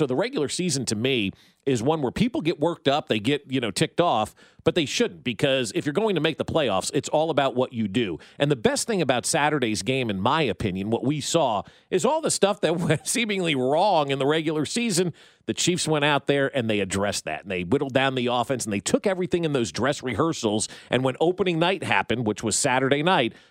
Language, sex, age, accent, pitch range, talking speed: English, male, 40-59, American, 125-175 Hz, 235 wpm